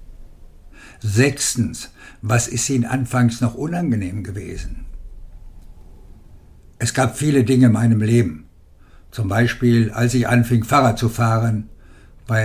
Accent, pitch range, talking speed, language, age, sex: German, 105-125 Hz, 115 wpm, German, 60-79, male